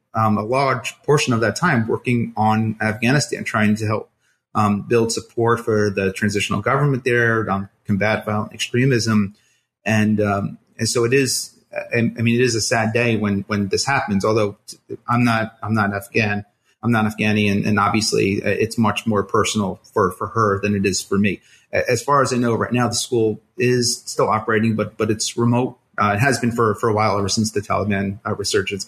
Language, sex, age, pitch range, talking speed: English, male, 30-49, 105-120 Hz, 200 wpm